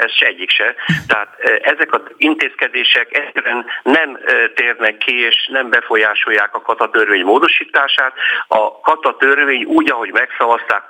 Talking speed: 130 wpm